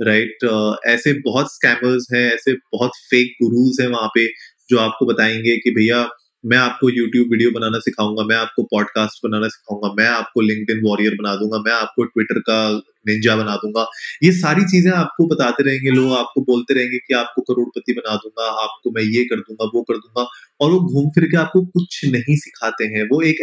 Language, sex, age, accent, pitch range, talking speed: Hindi, male, 20-39, native, 110-135 Hz, 200 wpm